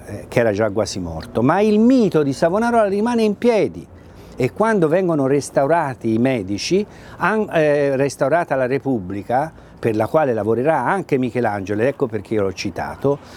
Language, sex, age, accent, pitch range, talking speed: Italian, male, 50-69, native, 105-155 Hz, 150 wpm